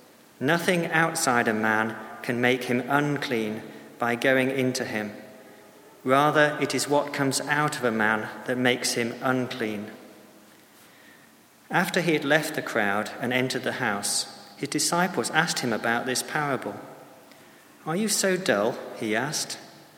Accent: British